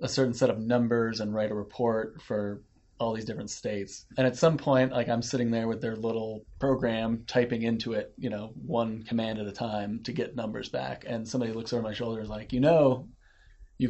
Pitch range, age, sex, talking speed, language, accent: 110-130 Hz, 30-49, male, 225 wpm, English, American